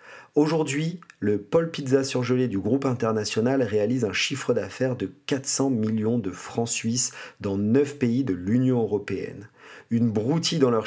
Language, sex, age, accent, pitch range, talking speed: French, male, 40-59, French, 110-135 Hz, 155 wpm